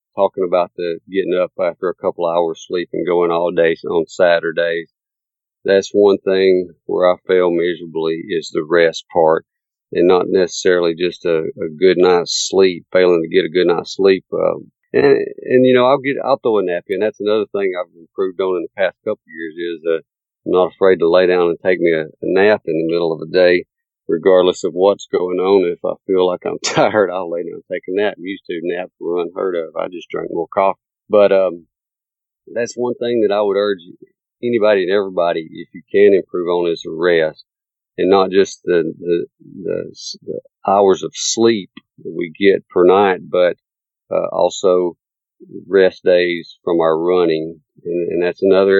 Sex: male